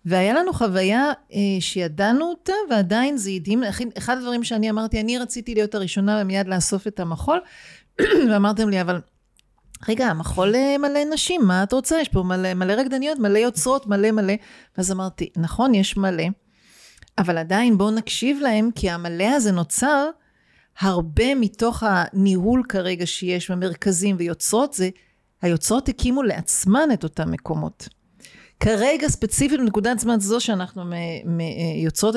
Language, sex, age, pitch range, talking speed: Hebrew, female, 40-59, 185-240 Hz, 145 wpm